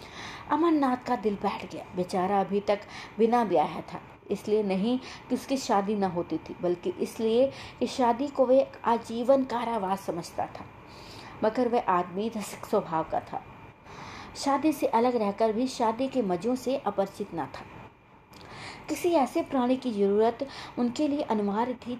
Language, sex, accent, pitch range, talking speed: Hindi, female, native, 200-255 Hz, 155 wpm